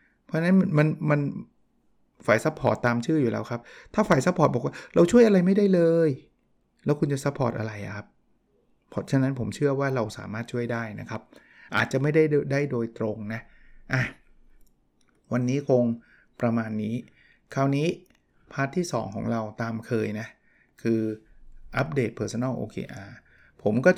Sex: male